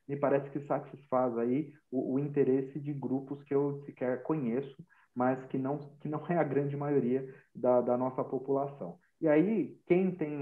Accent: Brazilian